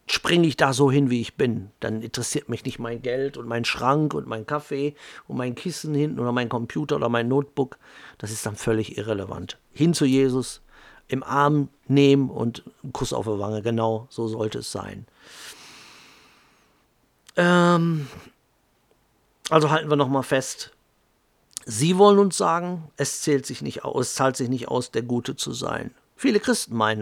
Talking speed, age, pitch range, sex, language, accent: 175 wpm, 50-69, 115-145 Hz, male, German, German